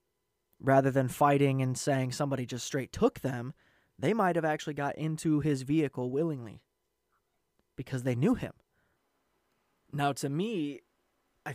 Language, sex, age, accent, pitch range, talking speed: English, male, 20-39, American, 135-155 Hz, 140 wpm